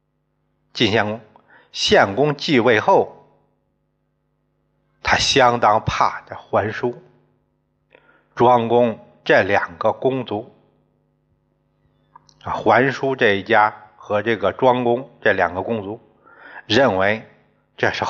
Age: 60-79